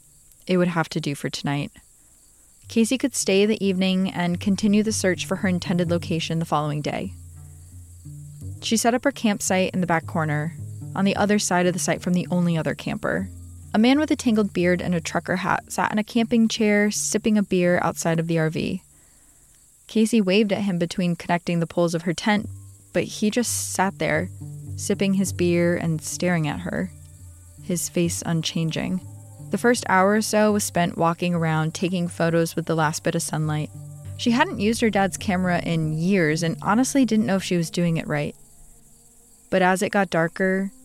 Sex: female